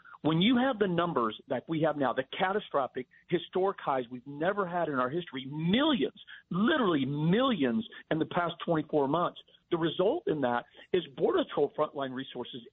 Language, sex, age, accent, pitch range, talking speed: English, male, 50-69, American, 135-170 Hz, 170 wpm